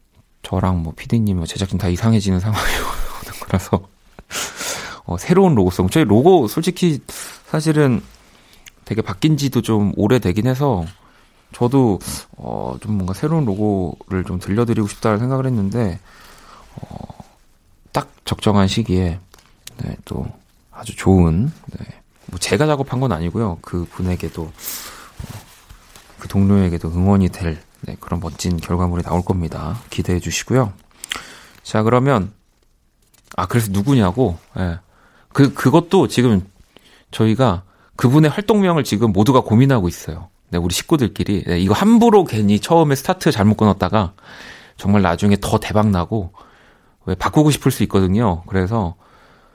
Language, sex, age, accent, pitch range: Korean, male, 30-49, native, 90-125 Hz